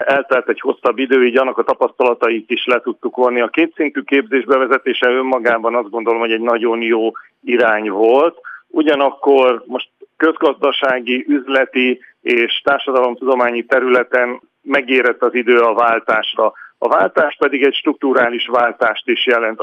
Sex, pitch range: male, 120-140 Hz